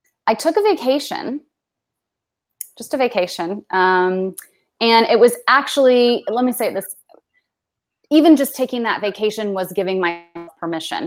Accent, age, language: American, 20-39, English